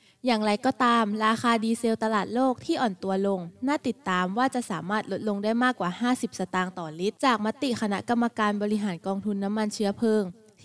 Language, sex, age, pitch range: Thai, female, 20-39, 195-250 Hz